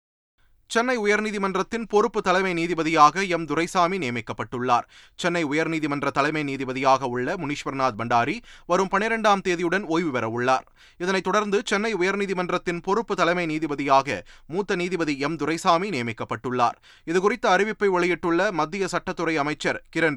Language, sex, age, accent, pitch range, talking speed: Tamil, male, 20-39, native, 155-200 Hz, 115 wpm